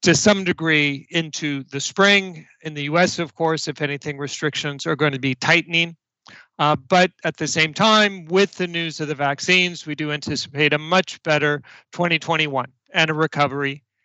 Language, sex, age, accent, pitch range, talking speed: English, male, 40-59, American, 150-175 Hz, 175 wpm